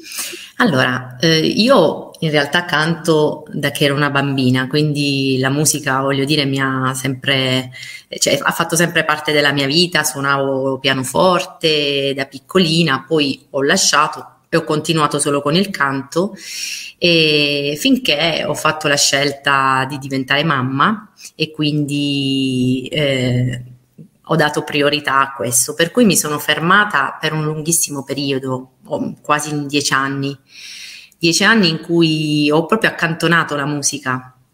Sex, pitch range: female, 140-165 Hz